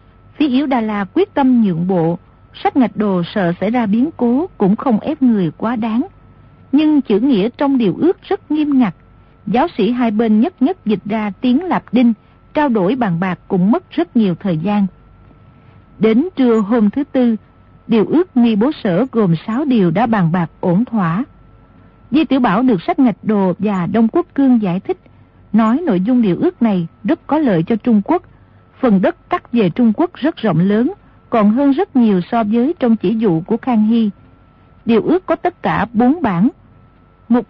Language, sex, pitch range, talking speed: Vietnamese, female, 195-265 Hz, 200 wpm